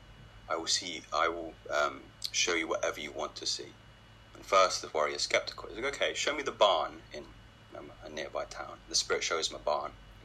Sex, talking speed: male, 215 wpm